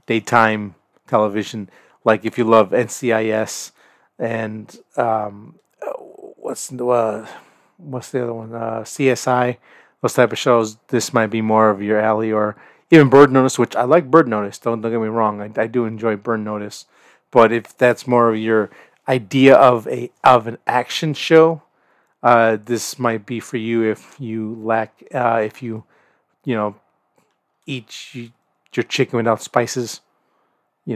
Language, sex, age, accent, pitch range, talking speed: English, male, 30-49, American, 110-130 Hz, 160 wpm